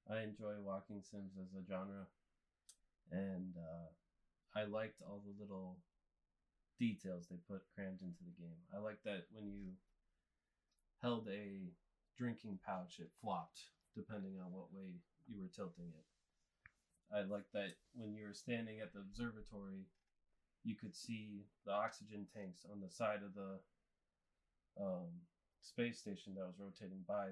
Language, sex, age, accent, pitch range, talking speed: English, male, 30-49, American, 95-115 Hz, 150 wpm